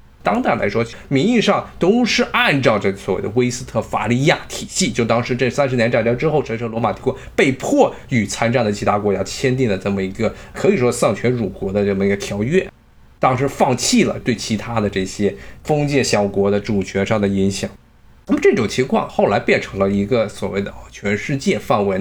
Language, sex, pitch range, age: Chinese, male, 105-140 Hz, 20-39